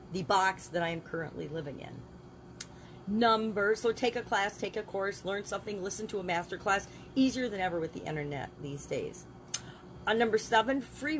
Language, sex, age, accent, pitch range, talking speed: English, female, 40-59, American, 175-235 Hz, 190 wpm